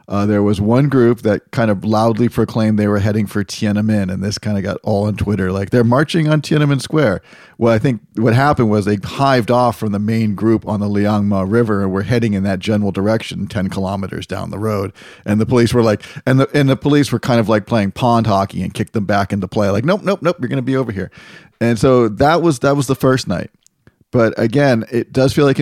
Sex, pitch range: male, 100-120 Hz